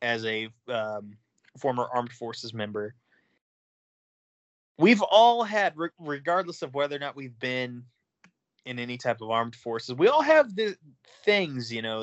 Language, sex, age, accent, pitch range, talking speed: English, male, 30-49, American, 115-180 Hz, 150 wpm